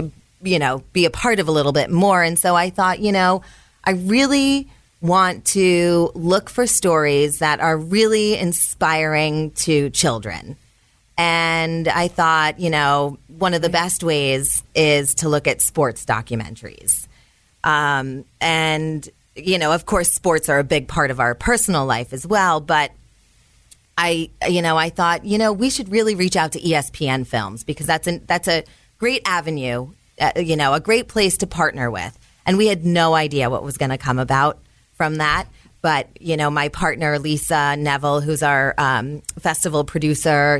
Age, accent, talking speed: 30-49, American, 175 wpm